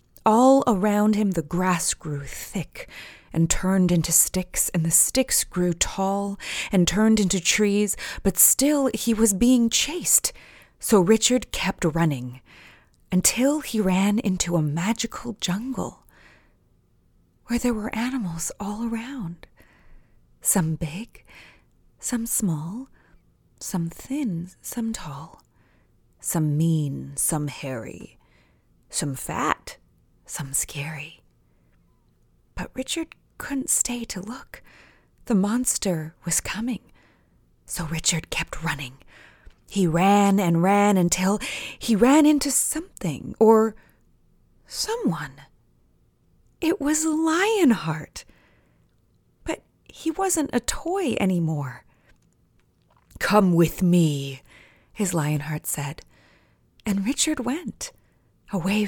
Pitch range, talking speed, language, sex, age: 165-235 Hz, 105 wpm, French, female, 30-49